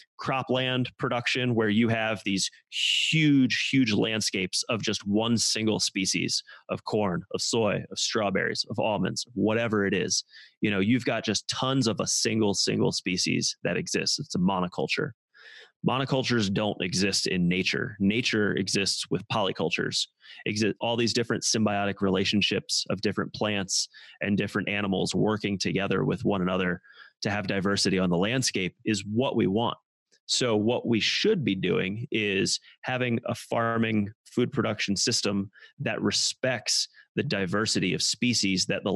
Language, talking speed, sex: English, 150 wpm, male